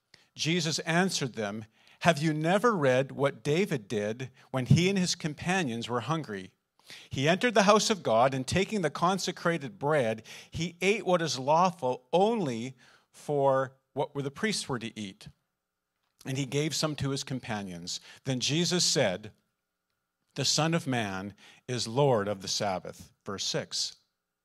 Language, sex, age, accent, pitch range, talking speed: English, male, 50-69, American, 120-170 Hz, 150 wpm